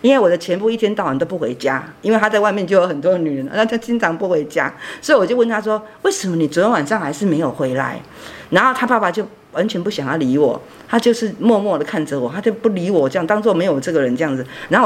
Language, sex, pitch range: Chinese, female, 185-280 Hz